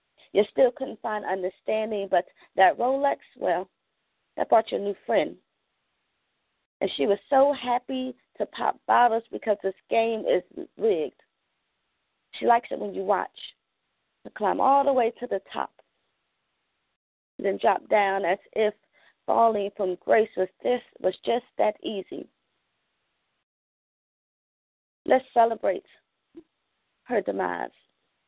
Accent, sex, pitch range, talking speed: American, female, 195-230 Hz, 130 wpm